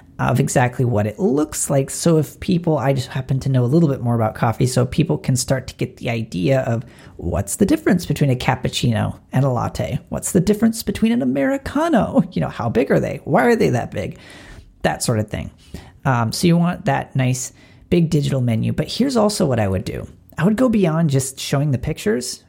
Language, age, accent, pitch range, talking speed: English, 40-59, American, 115-170 Hz, 220 wpm